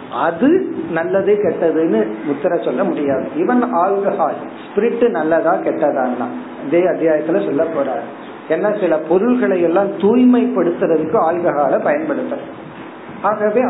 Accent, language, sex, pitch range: native, Tamil, male, 165-245 Hz